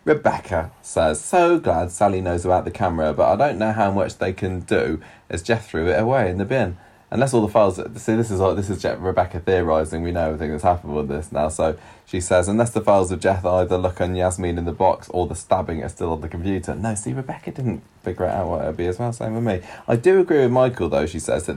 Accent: British